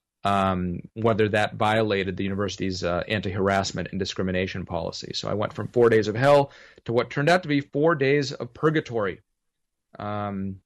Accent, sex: American, male